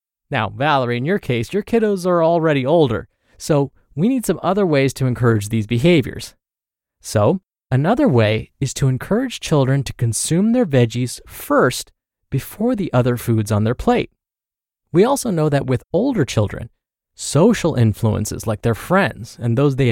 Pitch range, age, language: 120-185 Hz, 20-39, English